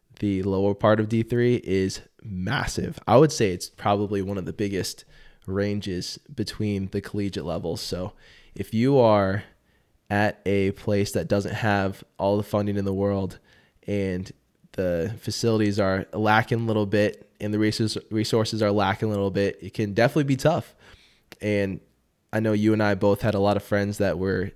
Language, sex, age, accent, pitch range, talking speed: English, male, 20-39, American, 95-110 Hz, 175 wpm